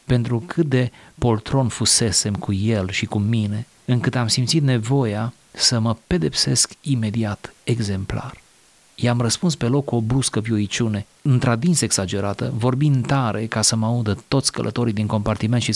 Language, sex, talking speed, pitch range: Romanian, male, 150 wpm, 100-125 Hz